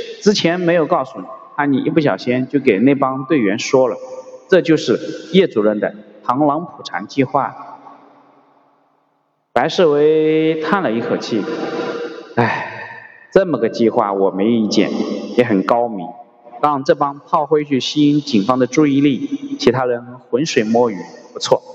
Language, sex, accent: Chinese, male, native